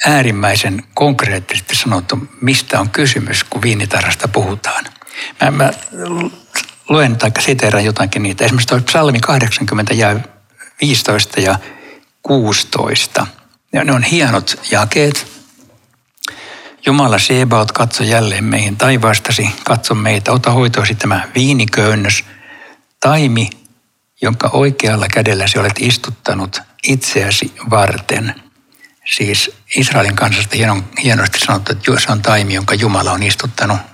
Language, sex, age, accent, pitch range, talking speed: Finnish, male, 60-79, native, 105-130 Hz, 105 wpm